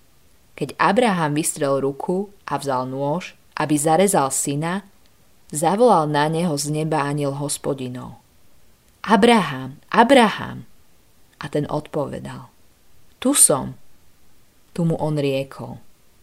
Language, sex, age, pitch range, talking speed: Slovak, female, 20-39, 145-190 Hz, 105 wpm